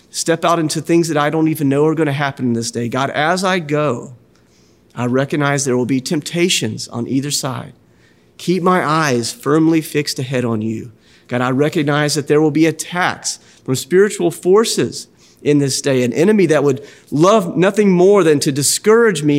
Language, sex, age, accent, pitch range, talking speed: English, male, 40-59, American, 120-155 Hz, 190 wpm